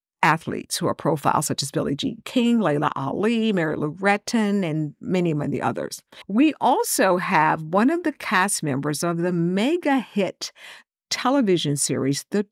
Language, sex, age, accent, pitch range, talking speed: English, female, 50-69, American, 165-220 Hz, 160 wpm